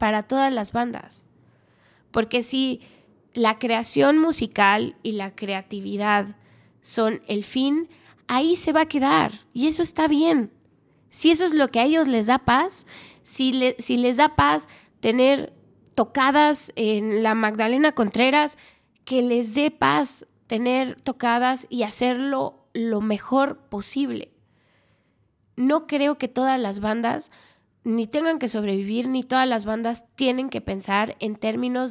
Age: 20-39